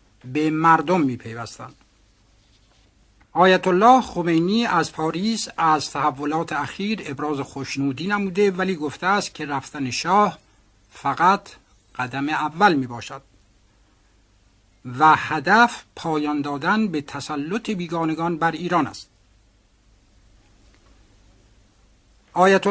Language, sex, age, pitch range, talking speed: Persian, male, 60-79, 125-180 Hz, 90 wpm